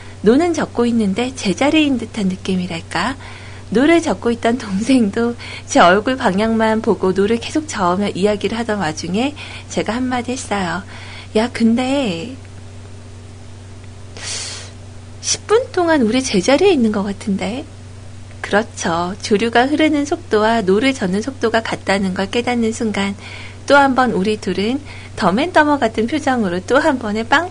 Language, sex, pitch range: Korean, female, 185-255 Hz